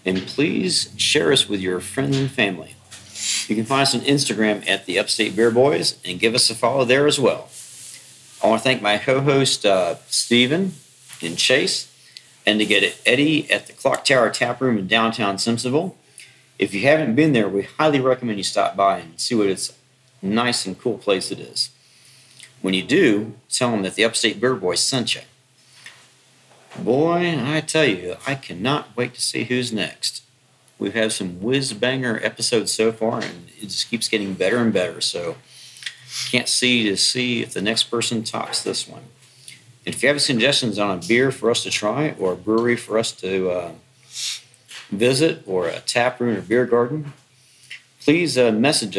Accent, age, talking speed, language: American, 50-69, 185 wpm, English